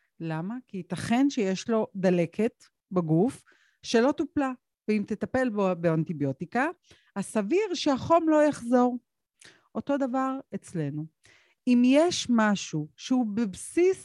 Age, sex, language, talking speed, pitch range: 50-69, female, Hebrew, 110 wpm, 175-245 Hz